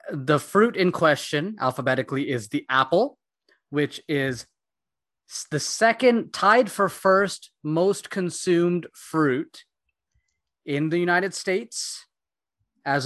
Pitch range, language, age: 130-175 Hz, English, 20-39